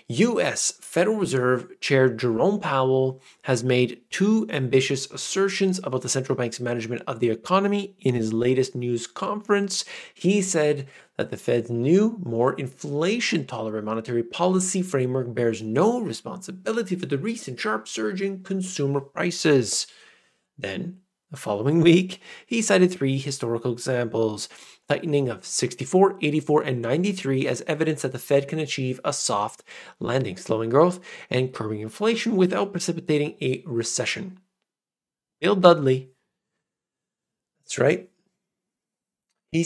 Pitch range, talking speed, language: 125-185 Hz, 130 wpm, English